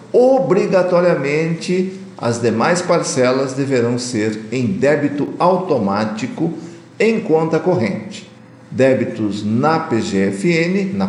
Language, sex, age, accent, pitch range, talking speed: Portuguese, male, 50-69, Brazilian, 125-190 Hz, 85 wpm